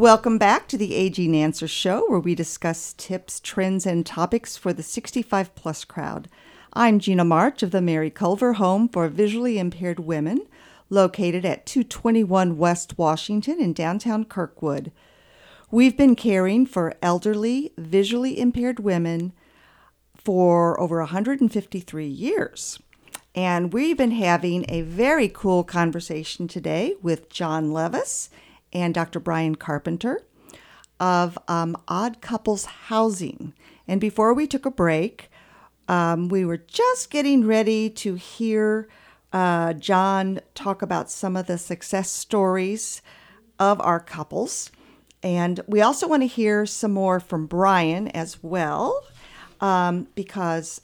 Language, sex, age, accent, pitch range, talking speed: English, female, 50-69, American, 170-220 Hz, 130 wpm